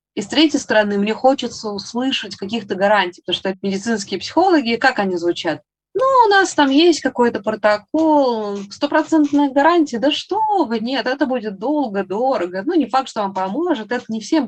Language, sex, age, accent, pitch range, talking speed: Russian, female, 20-39, native, 180-255 Hz, 170 wpm